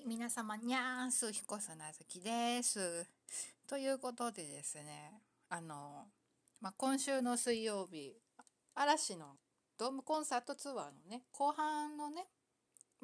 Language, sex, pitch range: Japanese, female, 175-255 Hz